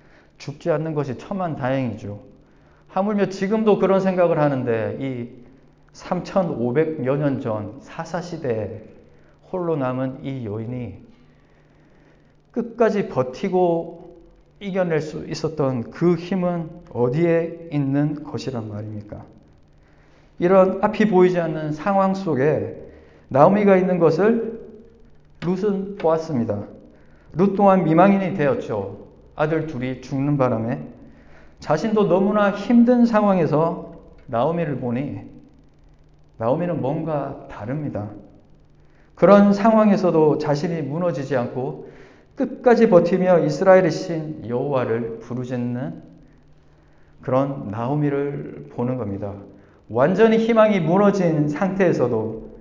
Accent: native